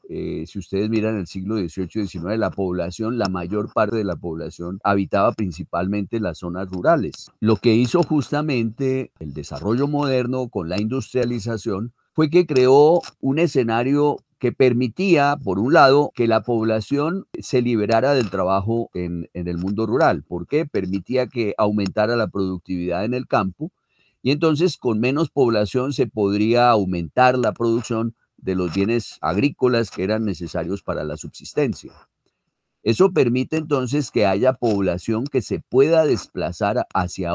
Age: 40-59